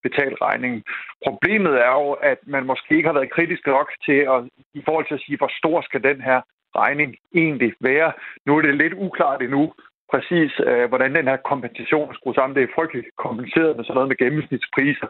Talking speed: 205 wpm